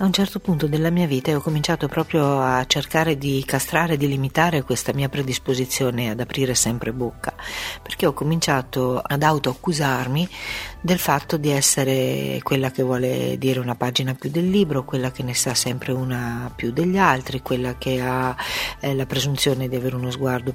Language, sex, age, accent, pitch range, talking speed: Italian, female, 50-69, native, 125-145 Hz, 175 wpm